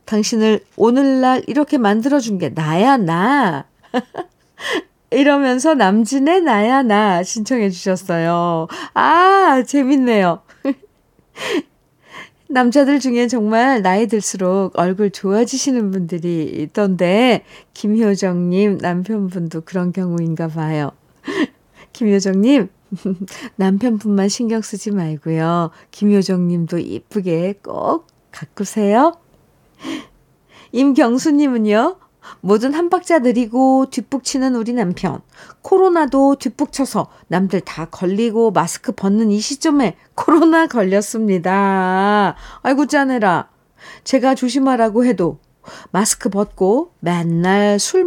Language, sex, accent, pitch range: Korean, female, native, 190-265 Hz